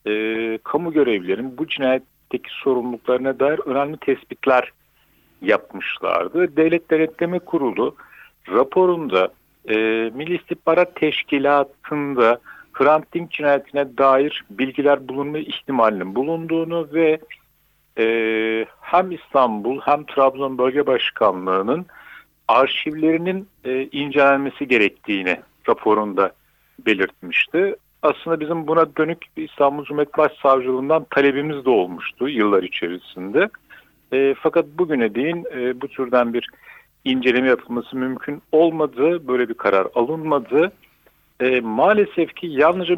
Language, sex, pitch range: Turkish, male, 125-160 Hz